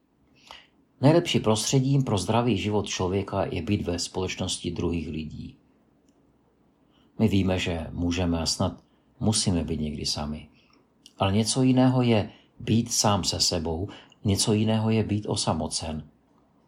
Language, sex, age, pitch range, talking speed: Czech, male, 50-69, 90-120 Hz, 125 wpm